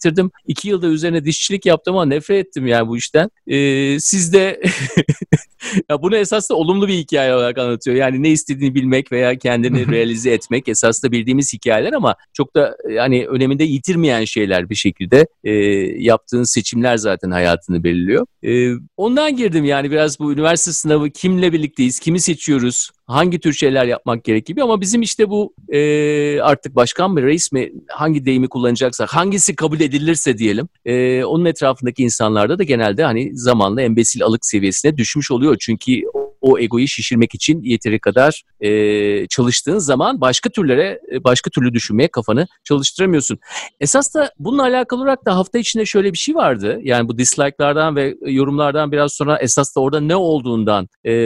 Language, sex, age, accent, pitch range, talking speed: Turkish, male, 50-69, native, 120-170 Hz, 160 wpm